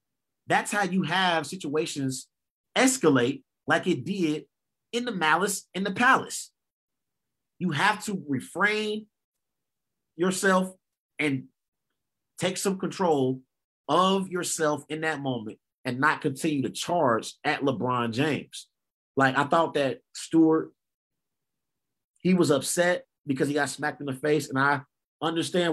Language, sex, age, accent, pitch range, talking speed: English, male, 30-49, American, 135-185 Hz, 130 wpm